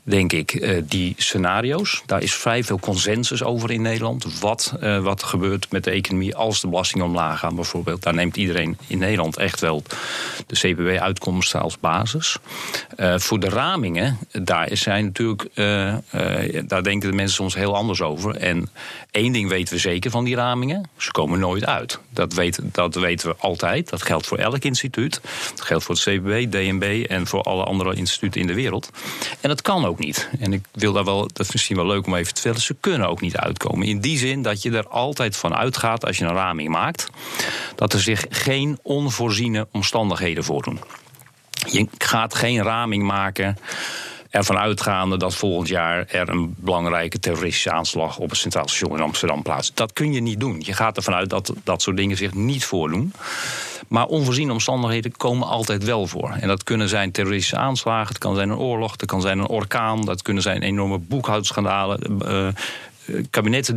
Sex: male